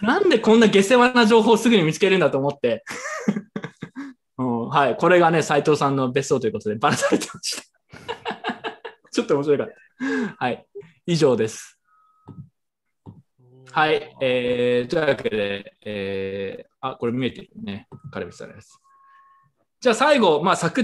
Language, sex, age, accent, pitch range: Japanese, male, 20-39, native, 135-230 Hz